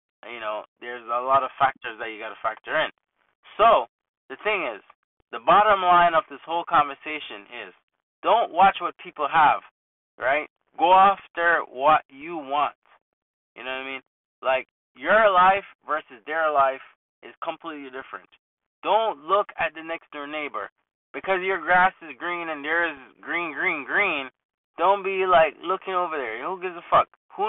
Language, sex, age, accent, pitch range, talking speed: English, male, 20-39, American, 140-185 Hz, 170 wpm